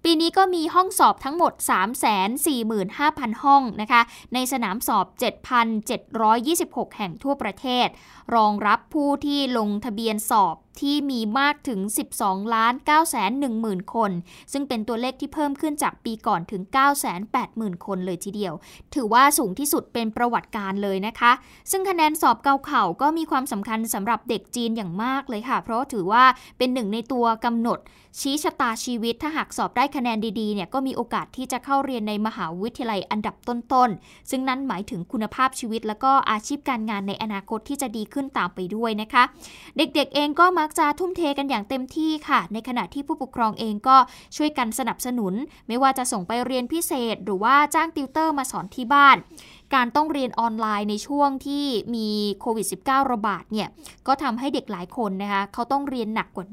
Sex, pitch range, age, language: female, 215-275 Hz, 20-39, Thai